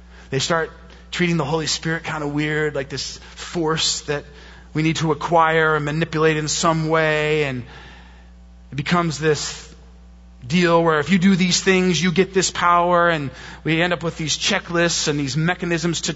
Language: English